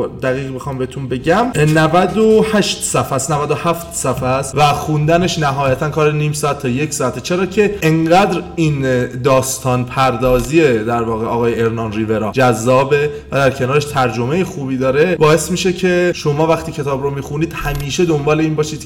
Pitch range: 130-175 Hz